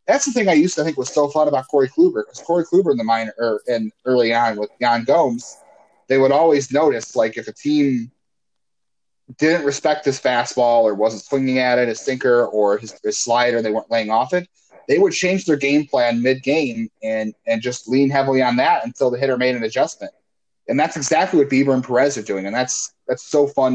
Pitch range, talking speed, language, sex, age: 115-150 Hz, 220 wpm, English, male, 30-49